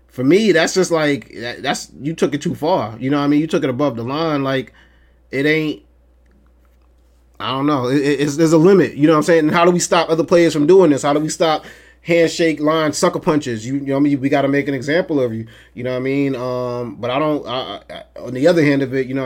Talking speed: 275 wpm